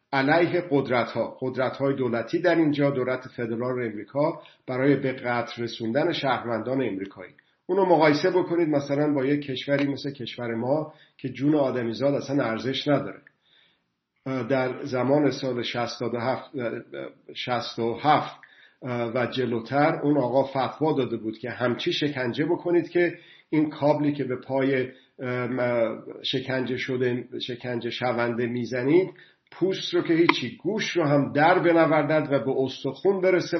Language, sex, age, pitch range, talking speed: Persian, male, 50-69, 125-150 Hz, 125 wpm